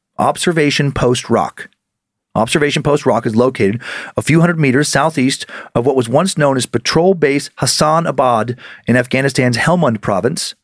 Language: English